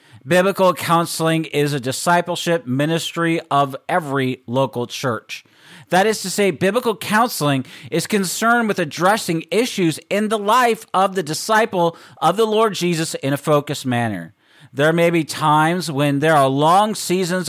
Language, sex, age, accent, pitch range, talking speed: English, male, 40-59, American, 150-190 Hz, 150 wpm